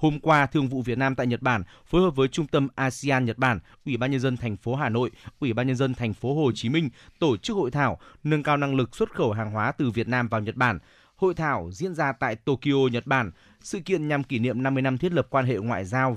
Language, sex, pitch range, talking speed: Vietnamese, male, 120-145 Hz, 265 wpm